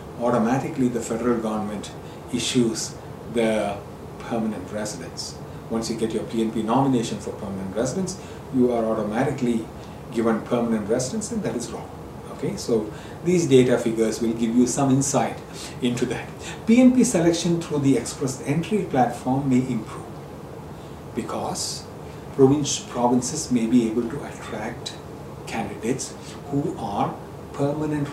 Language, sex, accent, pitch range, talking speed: English, male, Indian, 115-160 Hz, 125 wpm